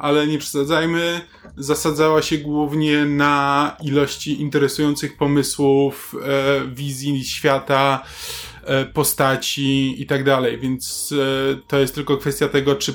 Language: Polish